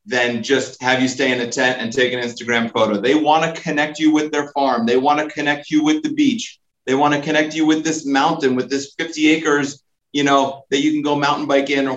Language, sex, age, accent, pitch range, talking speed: English, male, 30-49, American, 130-155 Hz, 255 wpm